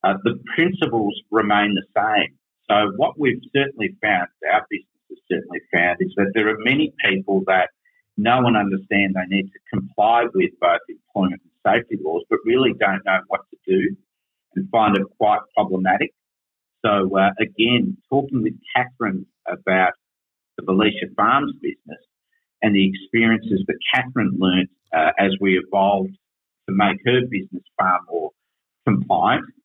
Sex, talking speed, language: male, 150 wpm, English